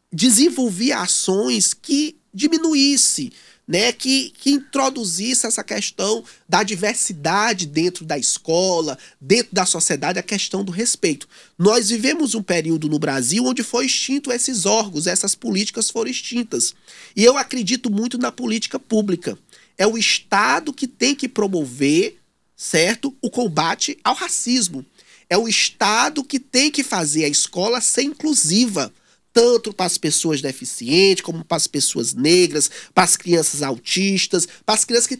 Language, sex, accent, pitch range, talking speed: Portuguese, male, Brazilian, 175-250 Hz, 140 wpm